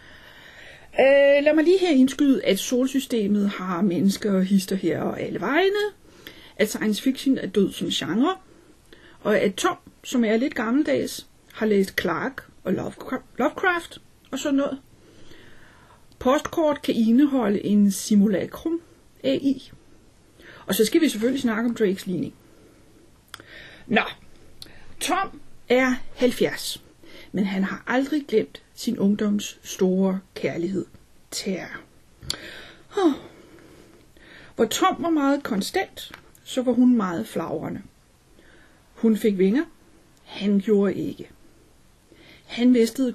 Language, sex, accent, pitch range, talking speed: Danish, female, native, 205-280 Hz, 120 wpm